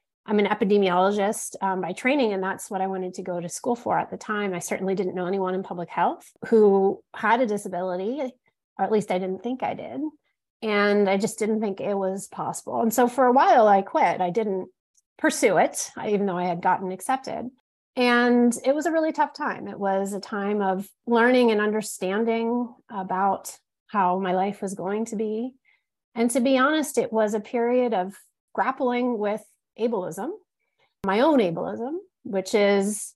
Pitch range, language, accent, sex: 195-245 Hz, English, American, female